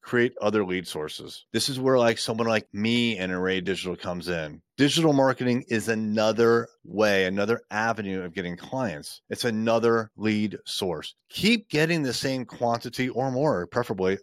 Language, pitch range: English, 105-130 Hz